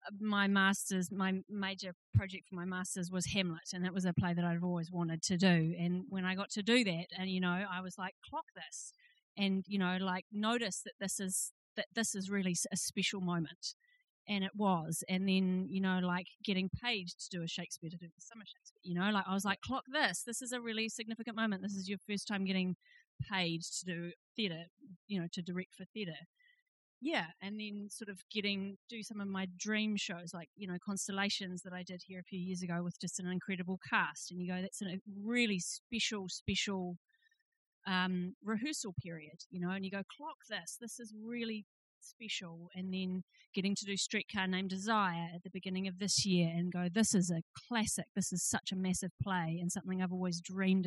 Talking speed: 215 wpm